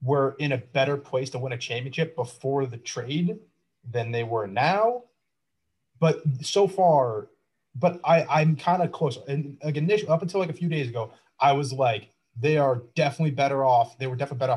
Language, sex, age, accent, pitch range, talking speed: English, male, 30-49, American, 125-155 Hz, 195 wpm